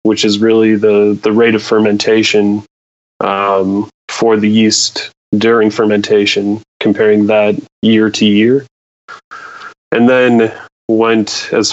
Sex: male